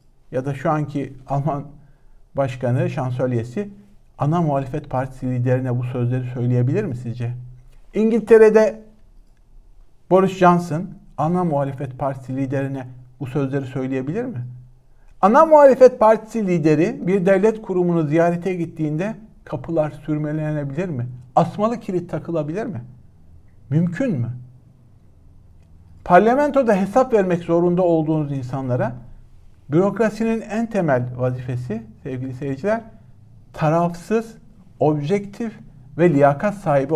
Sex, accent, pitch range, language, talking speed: male, native, 125-180 Hz, Turkish, 100 wpm